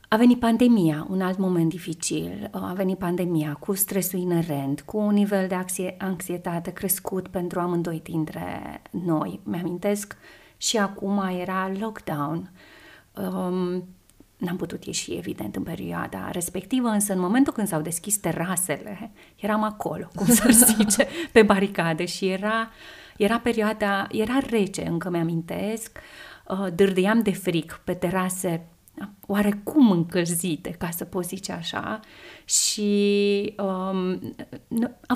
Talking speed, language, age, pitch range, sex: 125 wpm, Romanian, 30-49, 180-220 Hz, female